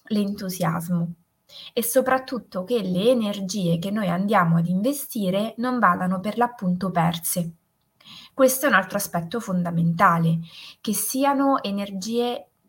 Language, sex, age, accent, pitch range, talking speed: Italian, female, 20-39, native, 180-235 Hz, 120 wpm